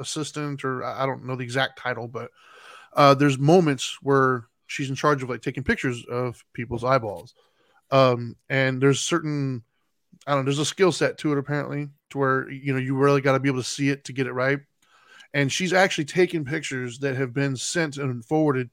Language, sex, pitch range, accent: English, male, 130-150 Hz, American